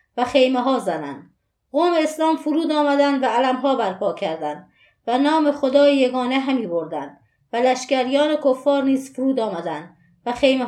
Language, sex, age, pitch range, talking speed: Persian, female, 30-49, 240-285 Hz, 150 wpm